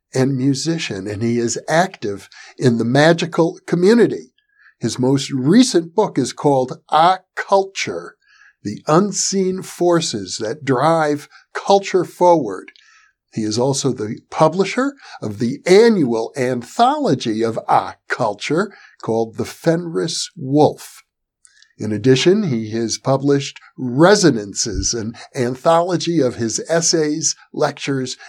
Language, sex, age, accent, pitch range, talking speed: English, male, 60-79, American, 120-185 Hz, 110 wpm